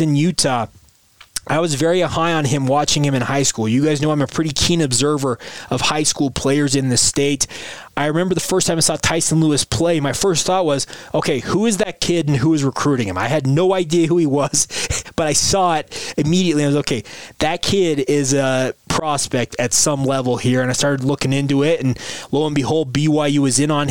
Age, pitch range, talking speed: 20-39, 130-155 Hz, 225 wpm